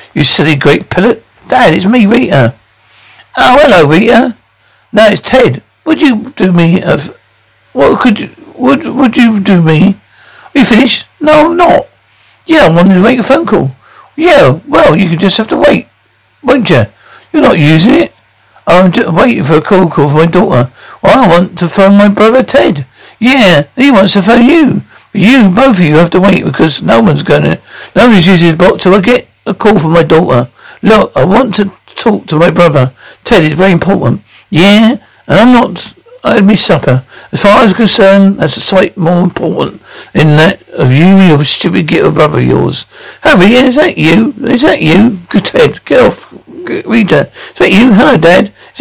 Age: 60-79